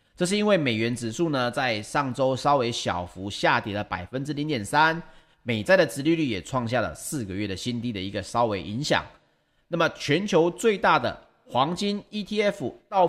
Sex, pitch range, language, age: male, 115-175 Hz, Chinese, 30-49